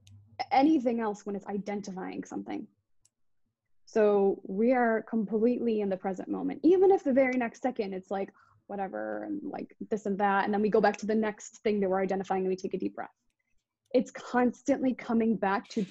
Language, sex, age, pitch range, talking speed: English, female, 20-39, 190-230 Hz, 190 wpm